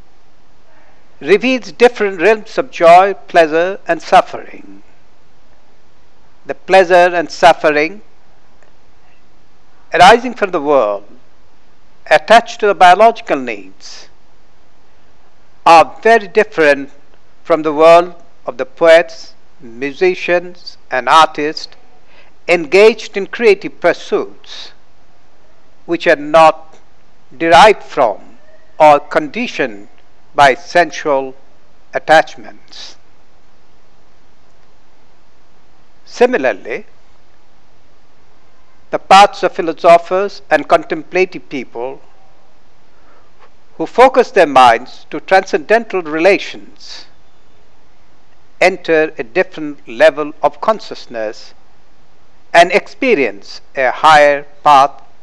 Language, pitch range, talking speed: English, 155-200 Hz, 80 wpm